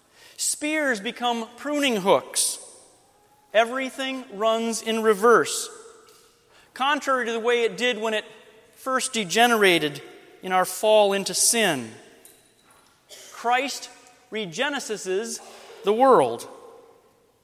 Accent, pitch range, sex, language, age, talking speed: American, 210-270 Hz, male, English, 30-49, 95 wpm